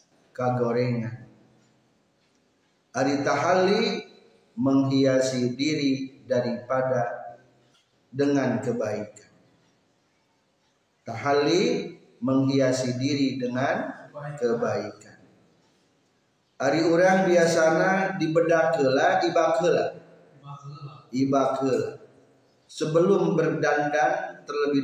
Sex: male